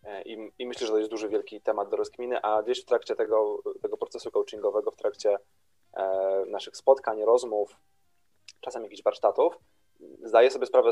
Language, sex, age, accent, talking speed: Polish, male, 20-39, native, 165 wpm